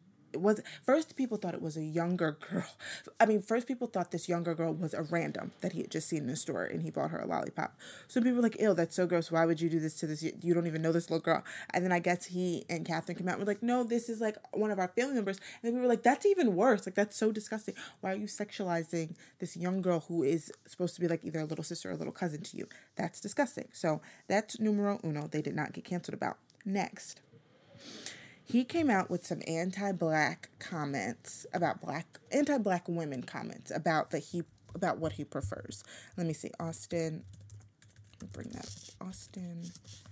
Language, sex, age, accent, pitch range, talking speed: English, female, 20-39, American, 155-200 Hz, 230 wpm